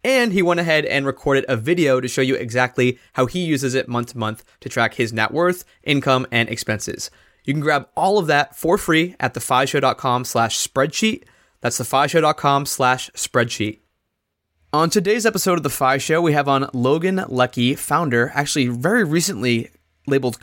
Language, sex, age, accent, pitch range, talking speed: English, male, 20-39, American, 120-155 Hz, 175 wpm